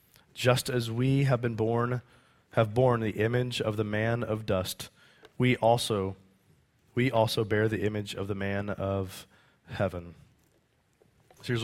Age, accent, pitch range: 30-49, American, 100-120 Hz